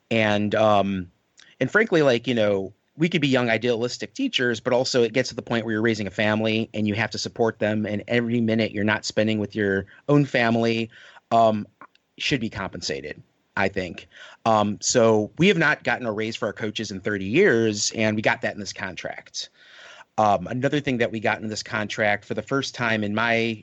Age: 30-49